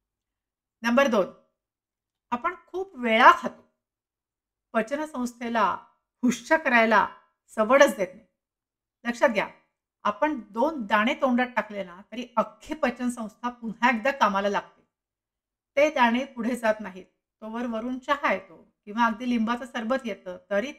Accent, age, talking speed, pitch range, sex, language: native, 60-79, 120 wpm, 205-255 Hz, female, Marathi